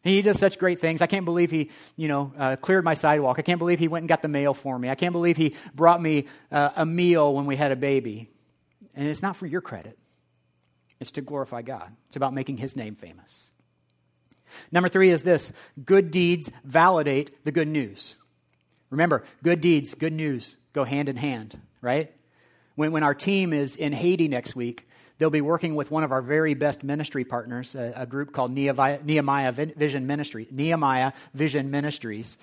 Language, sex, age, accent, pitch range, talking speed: English, male, 40-59, American, 135-170 Hz, 190 wpm